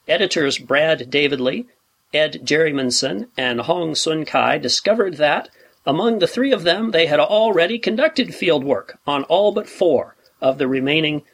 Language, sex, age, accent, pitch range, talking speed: English, male, 40-59, American, 130-165 Hz, 155 wpm